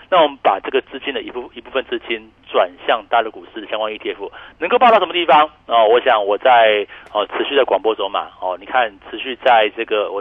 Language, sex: Chinese, male